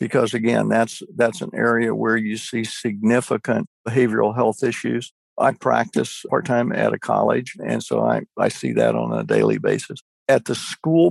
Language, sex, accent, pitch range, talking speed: English, male, American, 110-135 Hz, 180 wpm